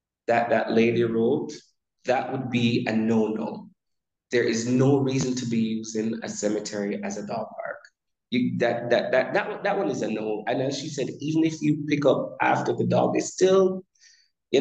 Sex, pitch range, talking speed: male, 115-160 Hz, 195 wpm